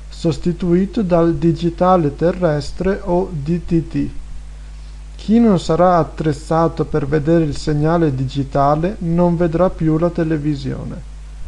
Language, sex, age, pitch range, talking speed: Italian, male, 50-69, 140-170 Hz, 105 wpm